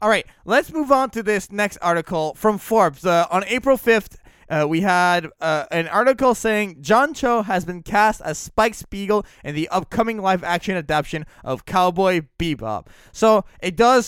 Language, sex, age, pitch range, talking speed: English, male, 20-39, 160-215 Hz, 170 wpm